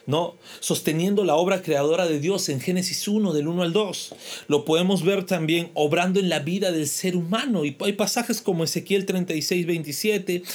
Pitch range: 165-205 Hz